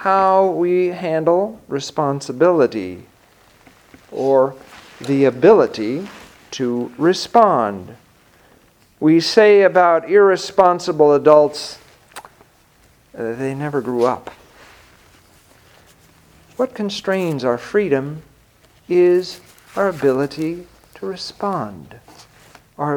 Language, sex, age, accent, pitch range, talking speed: English, male, 50-69, American, 135-195 Hz, 75 wpm